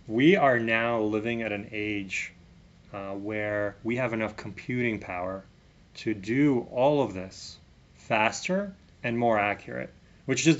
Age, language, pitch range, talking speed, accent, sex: 30-49, English, 105-115 Hz, 140 wpm, American, male